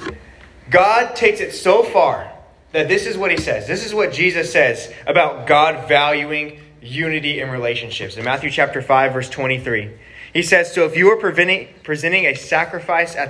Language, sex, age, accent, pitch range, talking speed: English, male, 20-39, American, 140-195 Hz, 170 wpm